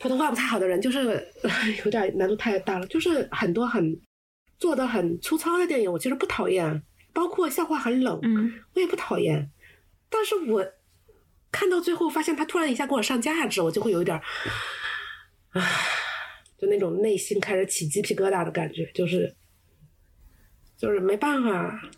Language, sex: Chinese, female